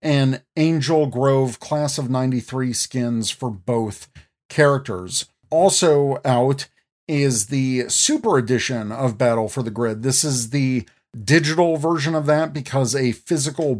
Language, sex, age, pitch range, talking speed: English, male, 40-59, 125-150 Hz, 135 wpm